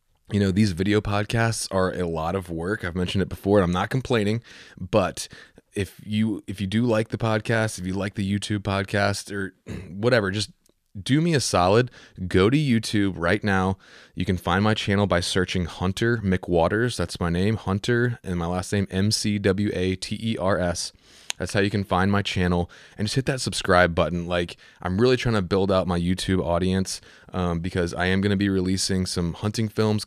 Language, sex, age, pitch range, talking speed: English, male, 20-39, 90-105 Hz, 195 wpm